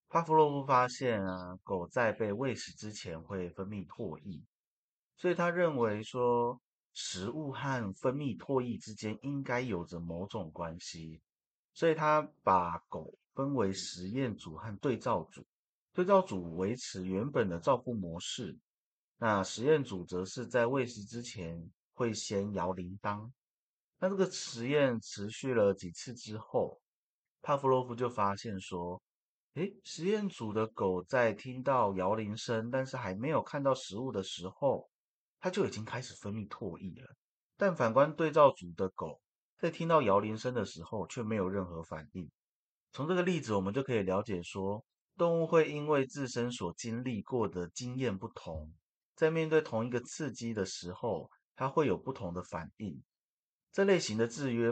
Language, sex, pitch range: Chinese, male, 95-140 Hz